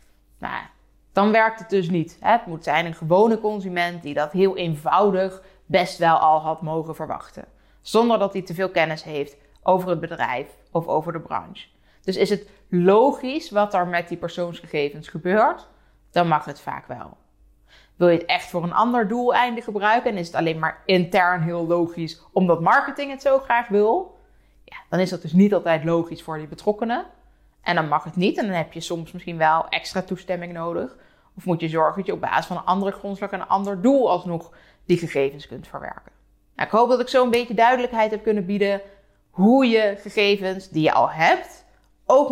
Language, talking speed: Dutch, 200 wpm